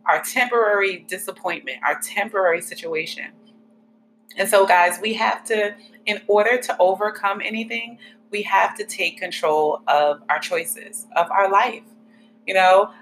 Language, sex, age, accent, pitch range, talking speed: English, female, 30-49, American, 175-225 Hz, 140 wpm